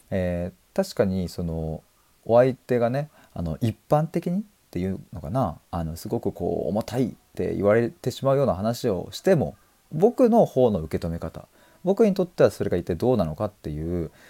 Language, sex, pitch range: Japanese, male, 90-135 Hz